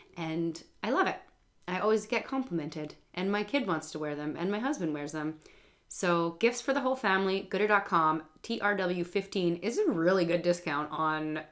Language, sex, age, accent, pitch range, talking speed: English, female, 30-49, American, 160-225 Hz, 175 wpm